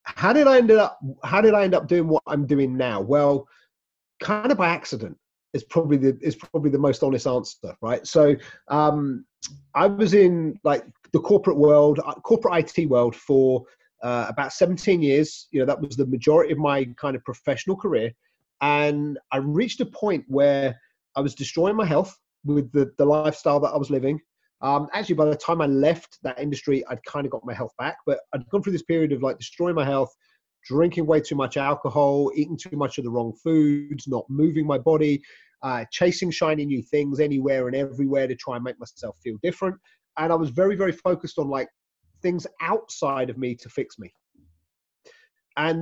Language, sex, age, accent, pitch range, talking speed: English, male, 30-49, British, 135-175 Hz, 200 wpm